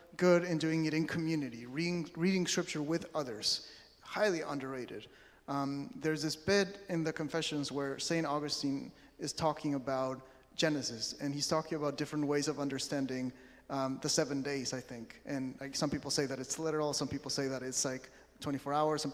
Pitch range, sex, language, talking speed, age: 140-175 Hz, male, English, 180 wpm, 30-49